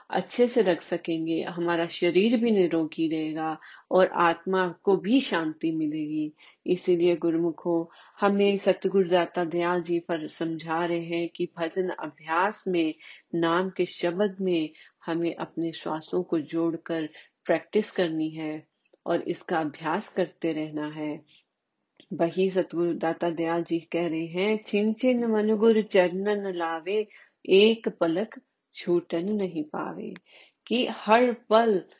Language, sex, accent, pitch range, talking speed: Hindi, female, native, 165-190 Hz, 130 wpm